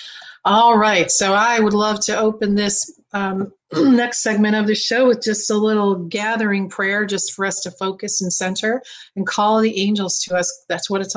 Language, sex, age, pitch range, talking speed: English, female, 40-59, 180-220 Hz, 200 wpm